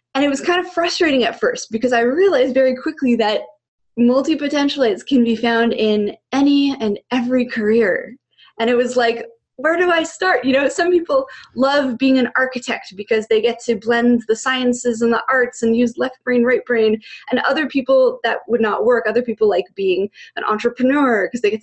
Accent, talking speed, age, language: American, 195 wpm, 20-39, English